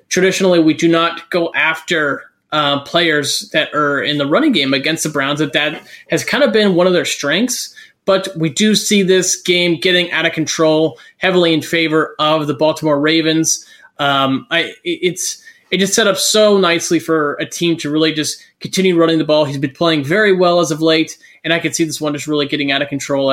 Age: 20-39